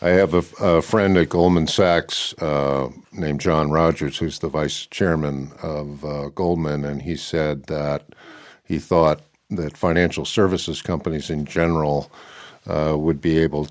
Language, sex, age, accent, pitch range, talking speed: English, male, 50-69, American, 75-85 Hz, 160 wpm